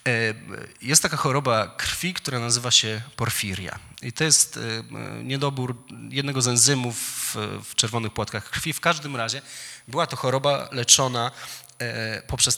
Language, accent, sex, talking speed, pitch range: Polish, native, male, 135 wpm, 110-130 Hz